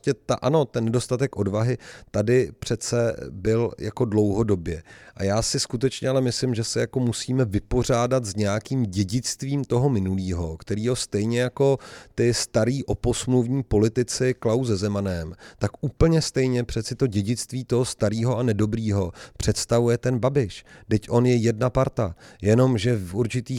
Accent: native